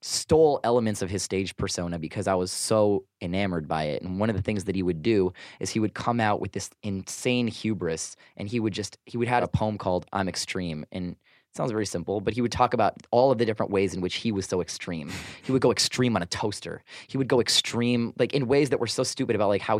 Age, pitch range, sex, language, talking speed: 20-39, 95-120 Hz, male, English, 260 wpm